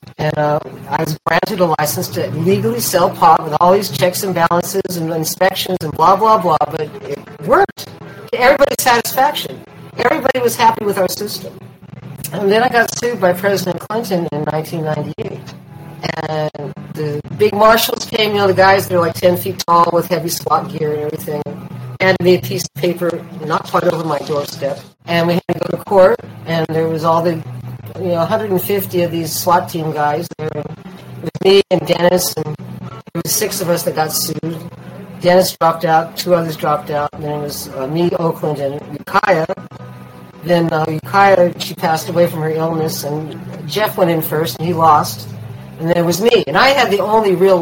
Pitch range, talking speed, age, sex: 155-190 Hz, 195 wpm, 50-69, female